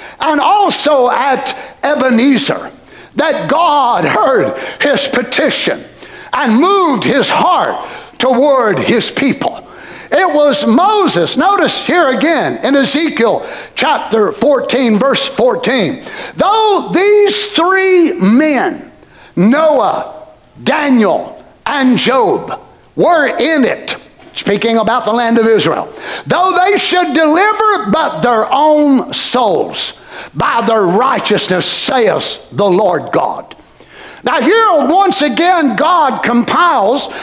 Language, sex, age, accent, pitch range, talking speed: English, male, 60-79, American, 245-340 Hz, 105 wpm